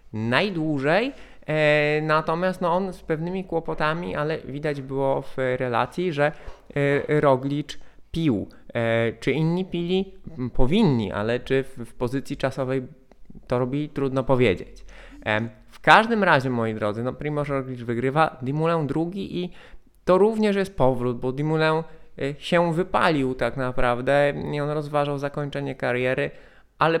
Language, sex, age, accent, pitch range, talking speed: Polish, male, 20-39, native, 125-155 Hz, 125 wpm